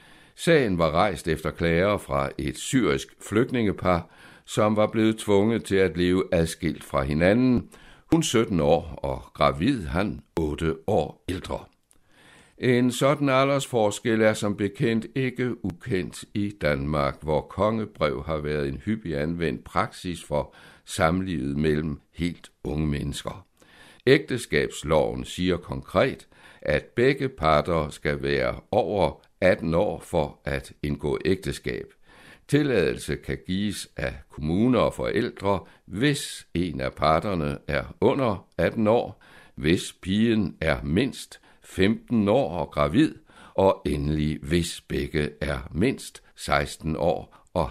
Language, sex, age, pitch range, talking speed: Danish, male, 60-79, 75-110 Hz, 125 wpm